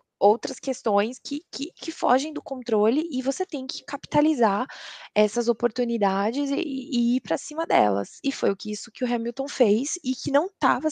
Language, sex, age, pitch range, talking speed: Portuguese, female, 20-39, 210-275 Hz, 185 wpm